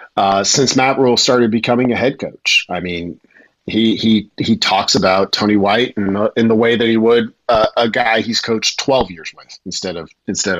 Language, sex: English, male